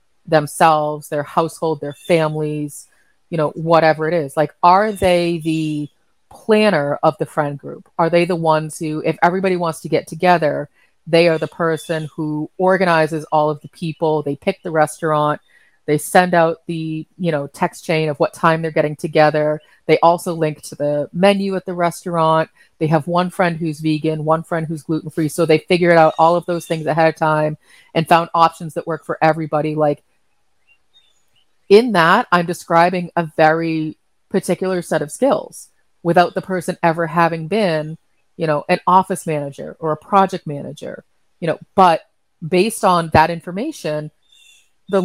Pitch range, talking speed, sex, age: 155-180 Hz, 175 wpm, female, 30-49